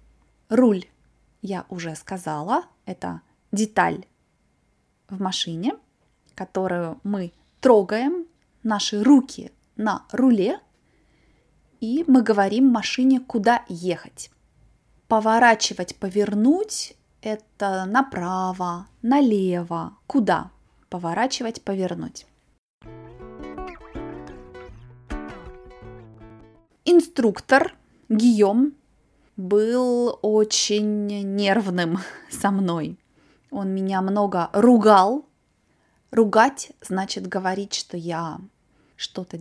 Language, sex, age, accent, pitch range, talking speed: Russian, female, 20-39, native, 185-255 Hz, 70 wpm